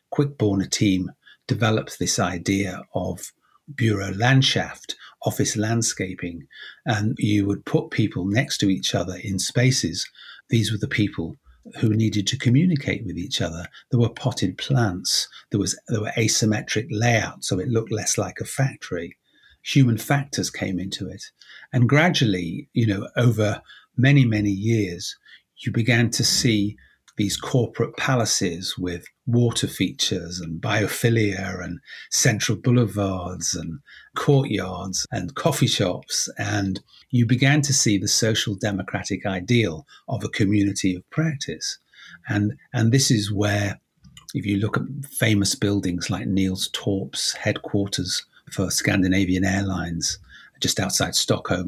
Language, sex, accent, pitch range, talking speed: English, male, British, 95-120 Hz, 135 wpm